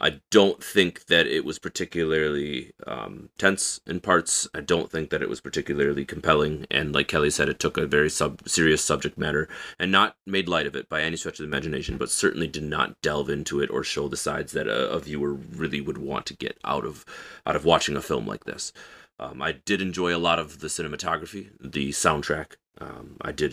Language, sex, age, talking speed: English, male, 30-49, 220 wpm